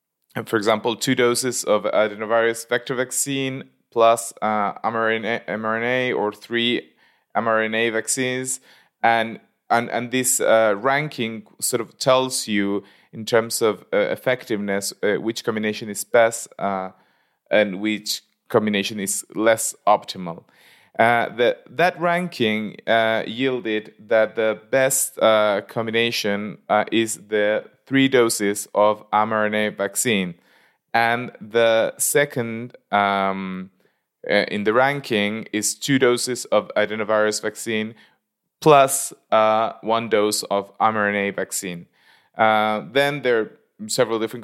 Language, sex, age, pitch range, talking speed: English, male, 20-39, 105-125 Hz, 115 wpm